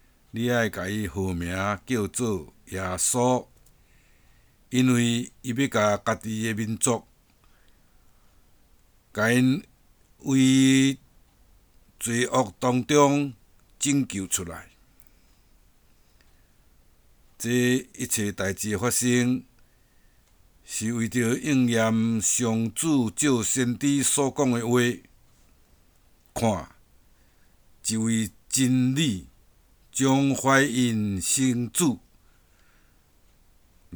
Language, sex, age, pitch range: Chinese, male, 60-79, 95-125 Hz